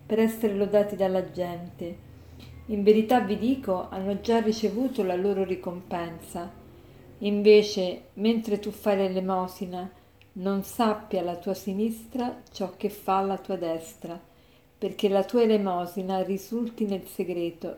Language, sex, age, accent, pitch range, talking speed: Italian, female, 50-69, native, 180-215 Hz, 130 wpm